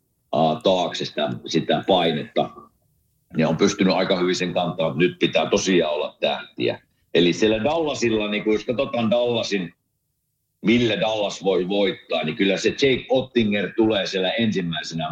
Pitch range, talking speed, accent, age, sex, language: 90-115 Hz, 145 wpm, native, 50-69, male, Finnish